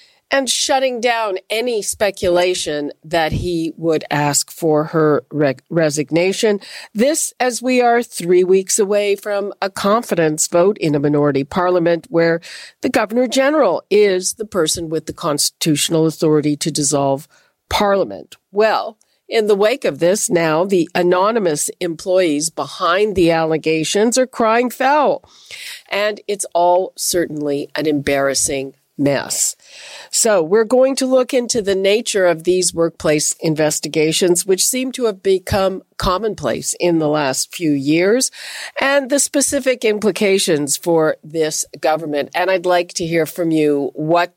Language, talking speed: English, 140 wpm